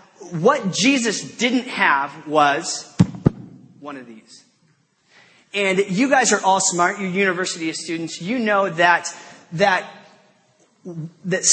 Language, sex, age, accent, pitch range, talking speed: English, male, 30-49, American, 170-230 Hz, 115 wpm